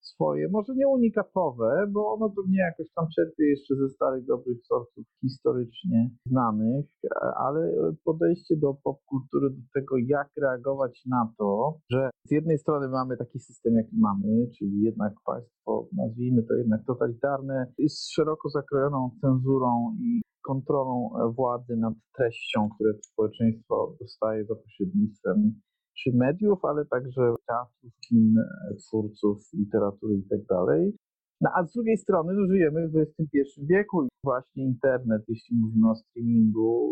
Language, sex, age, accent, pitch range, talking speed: Polish, male, 50-69, native, 120-180 Hz, 135 wpm